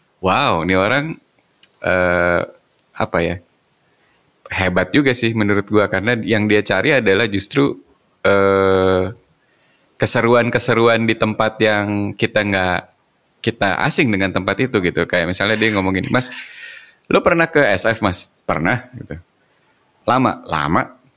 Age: 30-49